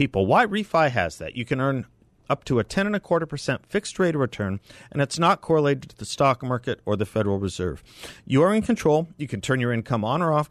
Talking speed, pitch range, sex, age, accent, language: 245 wpm, 105-150 Hz, male, 50-69, American, English